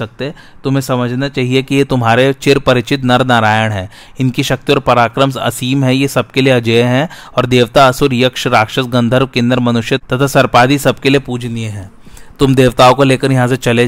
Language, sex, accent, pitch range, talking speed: Hindi, male, native, 120-135 Hz, 65 wpm